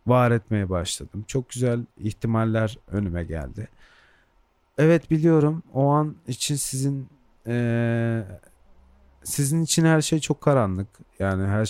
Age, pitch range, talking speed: 40-59, 100-130 Hz, 120 wpm